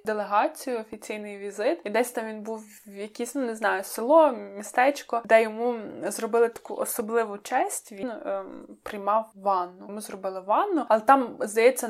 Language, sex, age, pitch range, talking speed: Ukrainian, female, 20-39, 205-245 Hz, 150 wpm